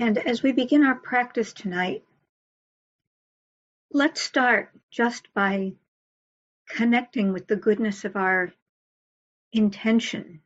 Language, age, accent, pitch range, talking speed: English, 50-69, American, 200-240 Hz, 105 wpm